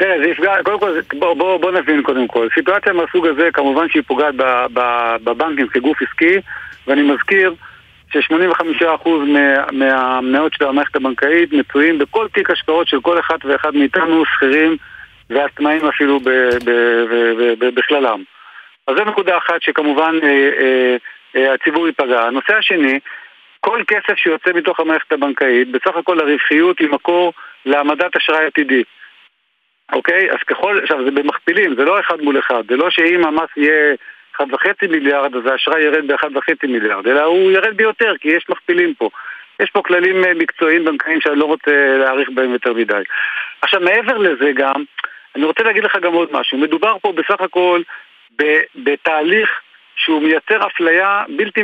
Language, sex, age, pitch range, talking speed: Hebrew, male, 50-69, 140-180 Hz, 145 wpm